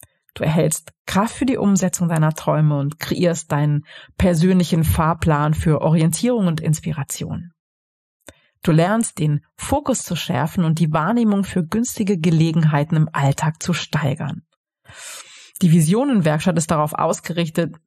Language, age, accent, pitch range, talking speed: German, 30-49, German, 155-185 Hz, 130 wpm